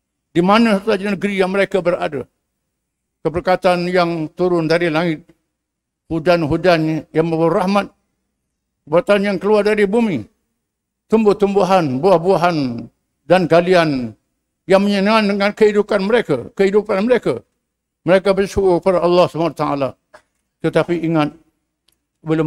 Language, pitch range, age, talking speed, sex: English, 165-195 Hz, 60-79, 105 wpm, male